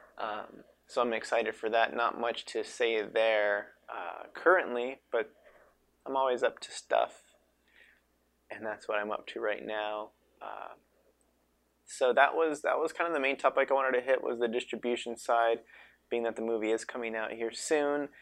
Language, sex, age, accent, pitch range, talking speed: English, male, 20-39, American, 110-135 Hz, 180 wpm